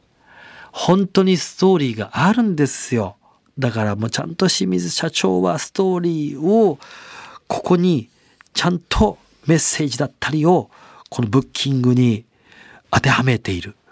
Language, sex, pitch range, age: Japanese, male, 115-175 Hz, 40-59